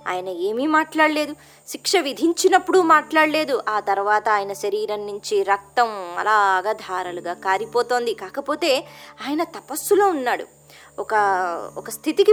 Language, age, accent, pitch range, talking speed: Telugu, 20-39, native, 200-335 Hz, 105 wpm